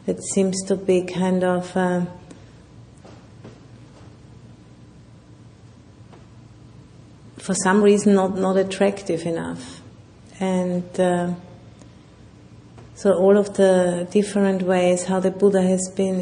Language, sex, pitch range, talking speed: English, female, 170-190 Hz, 100 wpm